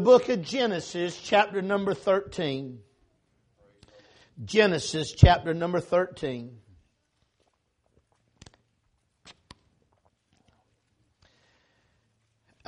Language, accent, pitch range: English, American, 130-205 Hz